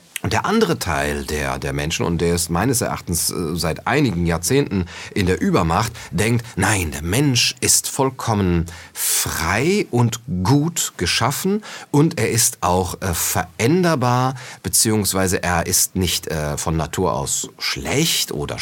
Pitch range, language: 85-115 Hz, German